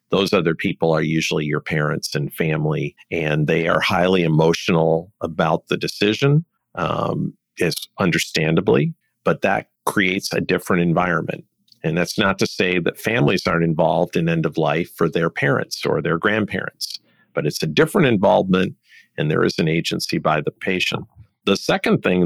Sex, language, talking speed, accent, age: male, English, 155 wpm, American, 50-69